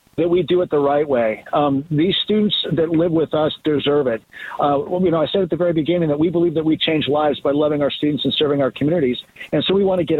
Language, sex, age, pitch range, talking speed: English, male, 50-69, 150-180 Hz, 265 wpm